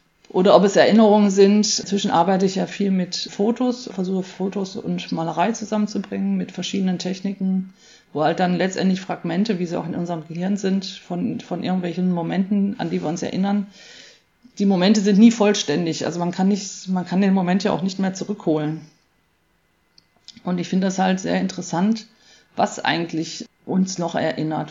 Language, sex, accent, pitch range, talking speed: German, female, German, 175-210 Hz, 170 wpm